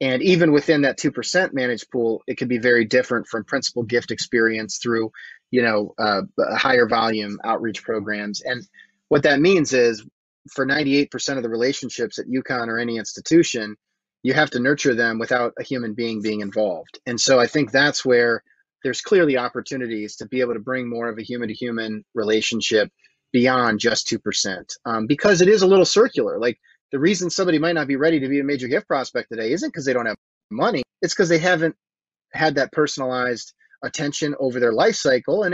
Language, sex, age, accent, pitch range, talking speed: English, male, 30-49, American, 120-150 Hz, 195 wpm